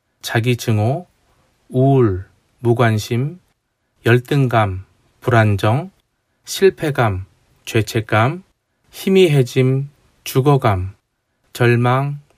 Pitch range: 115-140 Hz